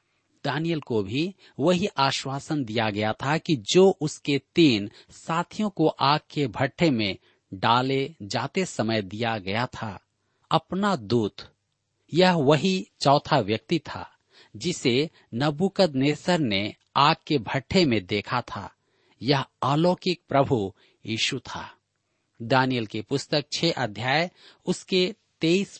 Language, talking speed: Hindi, 125 wpm